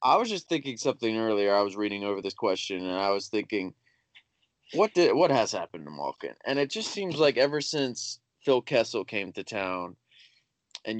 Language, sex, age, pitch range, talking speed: English, male, 20-39, 100-115 Hz, 195 wpm